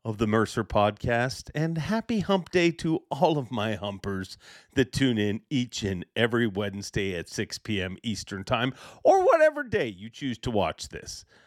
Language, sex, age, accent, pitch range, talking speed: English, male, 40-59, American, 110-160 Hz, 175 wpm